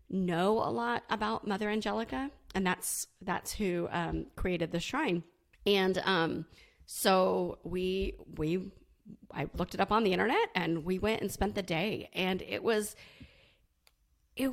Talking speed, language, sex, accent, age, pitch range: 155 wpm, English, female, American, 30-49, 170-210 Hz